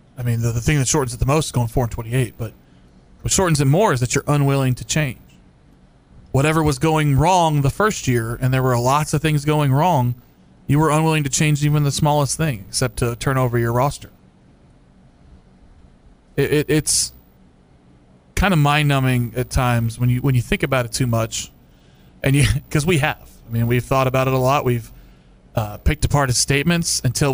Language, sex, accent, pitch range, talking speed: English, male, American, 120-150 Hz, 200 wpm